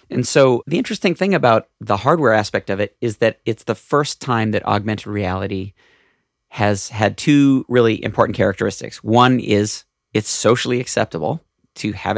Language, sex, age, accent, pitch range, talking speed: English, male, 40-59, American, 105-125 Hz, 165 wpm